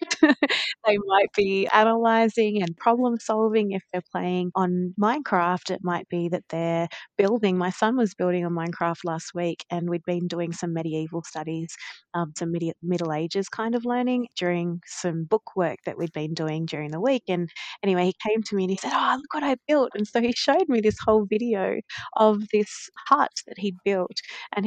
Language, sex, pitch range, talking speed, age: English, female, 170-220 Hz, 195 wpm, 20-39